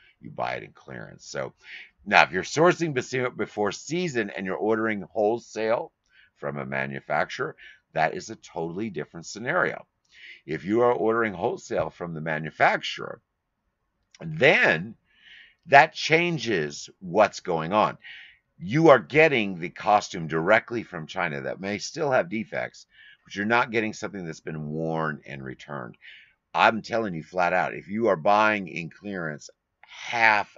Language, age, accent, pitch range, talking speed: English, 50-69, American, 70-100 Hz, 145 wpm